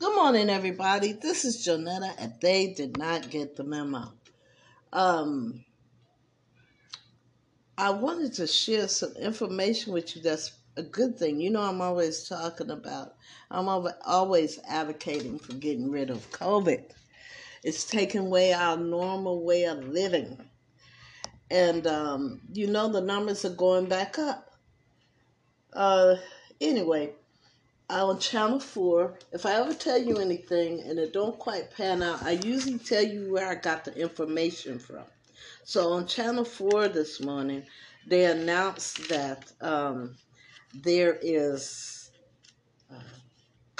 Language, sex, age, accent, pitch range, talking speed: English, female, 50-69, American, 145-195 Hz, 135 wpm